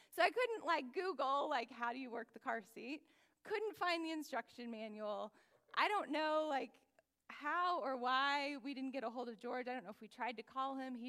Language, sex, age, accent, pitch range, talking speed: English, female, 20-39, American, 230-285 Hz, 225 wpm